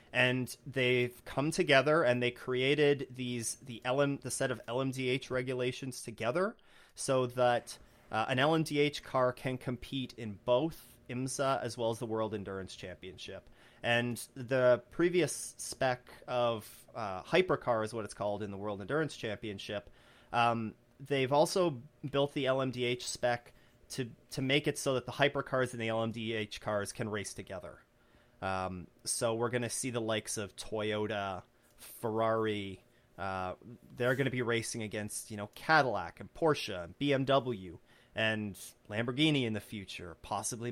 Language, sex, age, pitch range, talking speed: English, male, 30-49, 110-130 Hz, 150 wpm